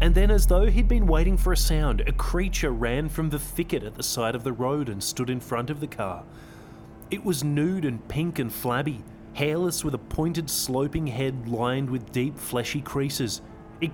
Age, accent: 30-49, Australian